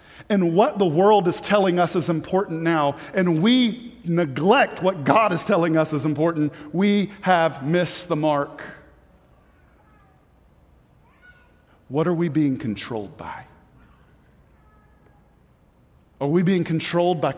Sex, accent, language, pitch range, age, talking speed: male, American, English, 150-205 Hz, 40-59, 125 wpm